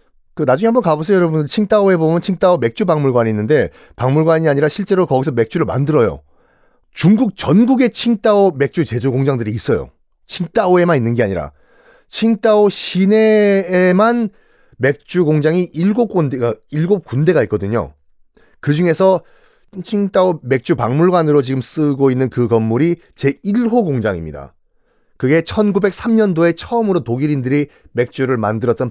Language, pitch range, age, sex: Korean, 130-200 Hz, 40-59, male